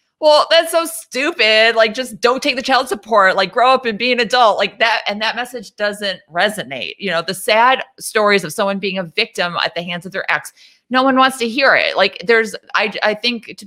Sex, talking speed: female, 235 wpm